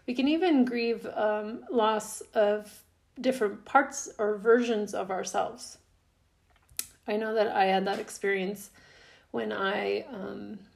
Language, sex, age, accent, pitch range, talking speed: English, female, 40-59, American, 185-220 Hz, 130 wpm